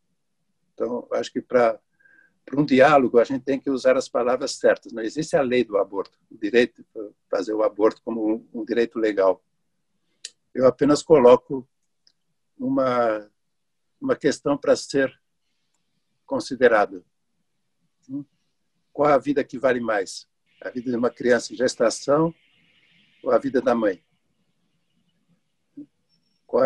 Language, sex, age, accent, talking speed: Portuguese, male, 60-79, Brazilian, 130 wpm